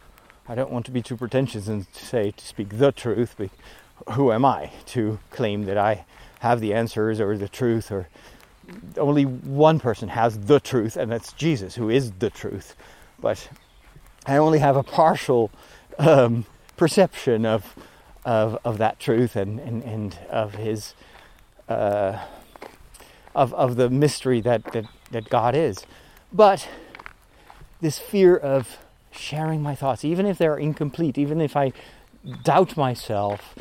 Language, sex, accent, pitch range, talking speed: English, male, American, 110-145 Hz, 155 wpm